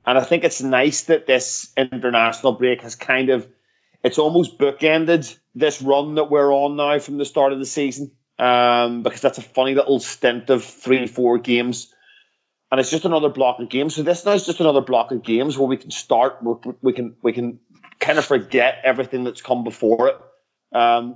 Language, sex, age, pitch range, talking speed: English, male, 30-49, 115-135 Hz, 200 wpm